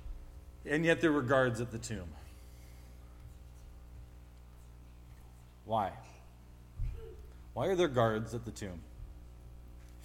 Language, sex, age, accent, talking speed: English, male, 30-49, American, 100 wpm